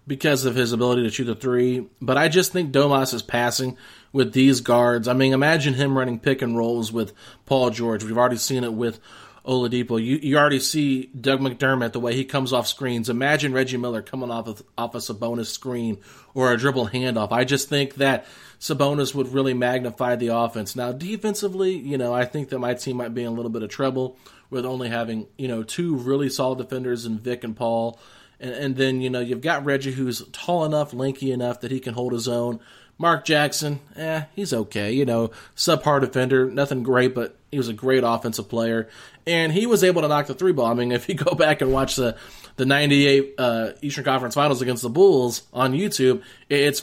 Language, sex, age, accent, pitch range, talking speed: English, male, 30-49, American, 120-145 Hz, 215 wpm